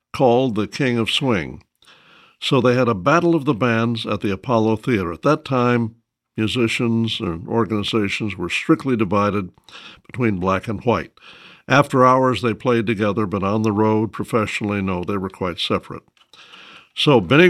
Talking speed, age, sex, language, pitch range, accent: 160 wpm, 60-79, male, English, 105-125 Hz, American